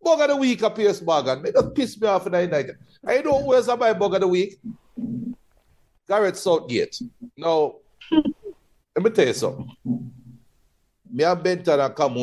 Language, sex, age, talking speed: English, male, 60-79, 165 wpm